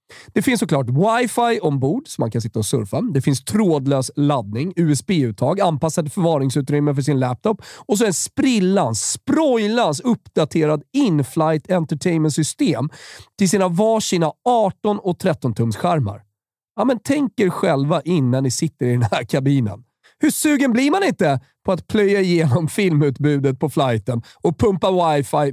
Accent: native